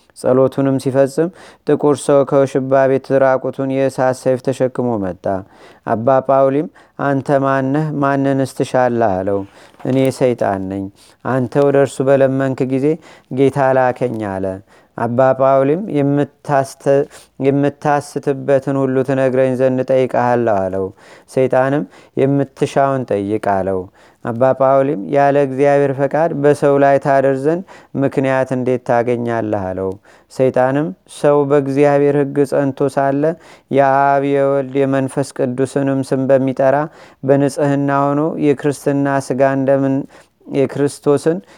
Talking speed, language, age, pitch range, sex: 95 wpm, Amharic, 30-49, 130-140 Hz, male